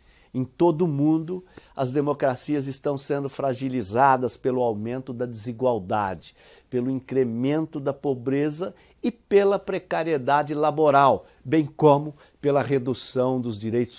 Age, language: 60-79, Portuguese